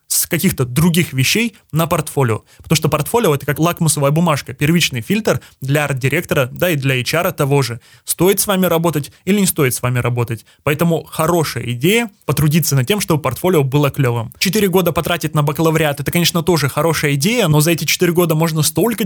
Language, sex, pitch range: Russian, male, 140-175 Hz